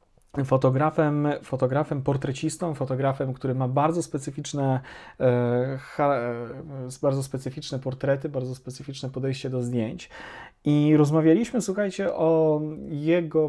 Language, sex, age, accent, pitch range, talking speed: Polish, male, 30-49, native, 135-155 Hz, 95 wpm